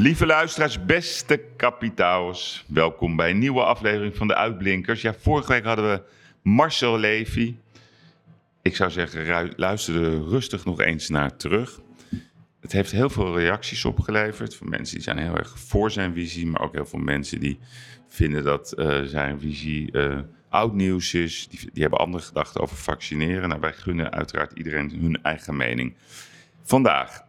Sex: male